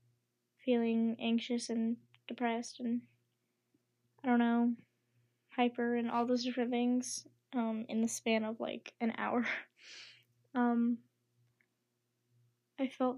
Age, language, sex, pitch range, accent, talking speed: 10-29, English, female, 220-255 Hz, American, 115 wpm